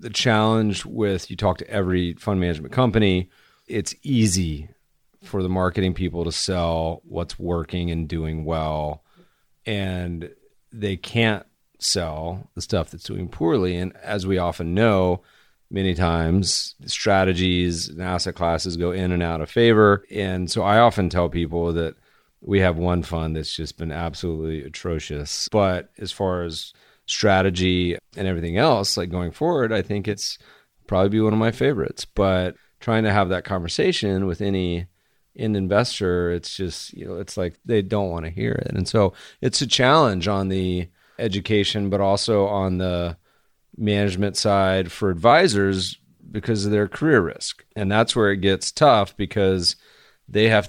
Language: English